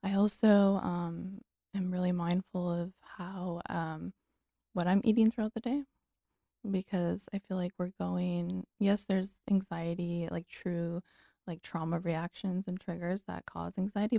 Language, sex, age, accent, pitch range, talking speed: English, female, 20-39, American, 175-205 Hz, 145 wpm